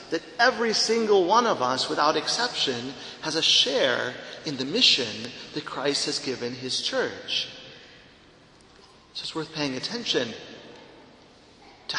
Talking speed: 130 wpm